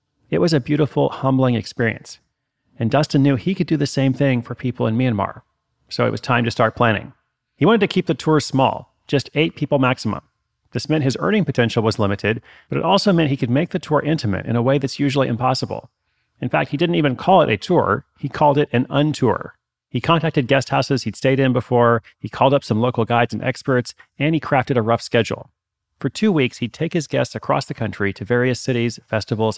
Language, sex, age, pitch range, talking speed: English, male, 30-49, 110-145 Hz, 225 wpm